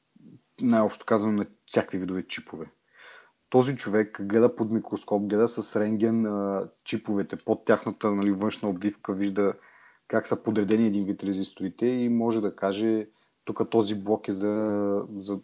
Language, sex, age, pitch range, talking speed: Bulgarian, male, 30-49, 100-115 Hz, 145 wpm